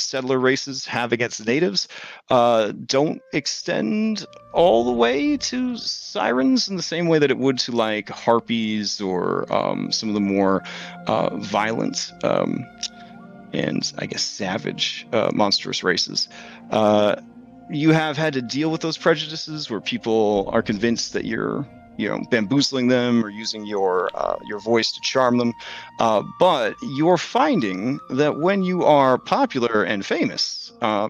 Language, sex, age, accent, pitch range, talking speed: English, male, 30-49, American, 110-155 Hz, 155 wpm